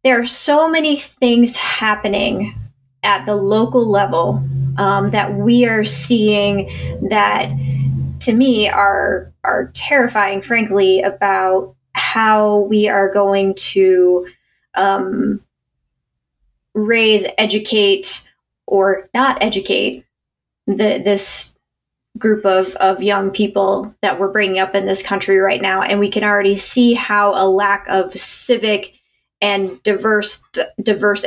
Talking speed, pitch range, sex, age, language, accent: 120 wpm, 195-225 Hz, female, 20-39, English, American